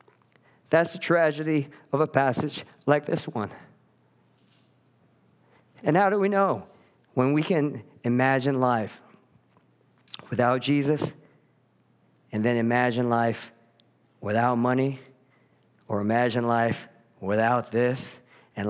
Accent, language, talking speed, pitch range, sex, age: American, English, 105 wpm, 110-125 Hz, male, 50-69